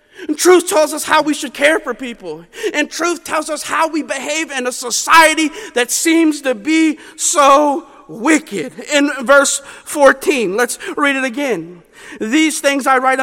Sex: male